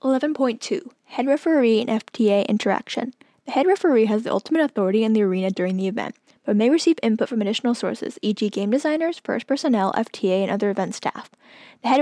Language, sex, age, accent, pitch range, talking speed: English, female, 10-29, American, 205-250 Hz, 190 wpm